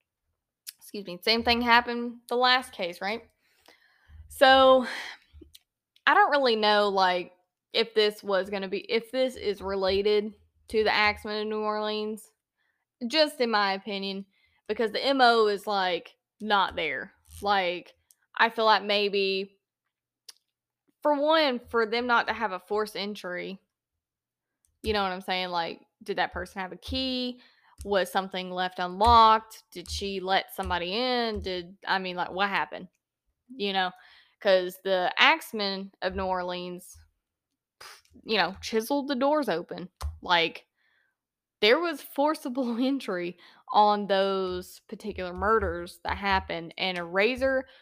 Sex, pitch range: female, 185-230 Hz